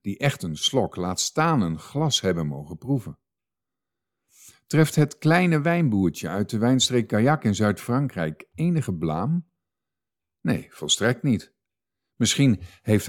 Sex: male